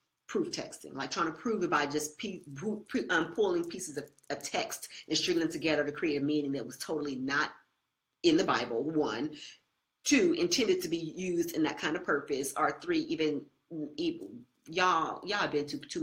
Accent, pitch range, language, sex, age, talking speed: American, 140-185 Hz, English, female, 40-59, 195 wpm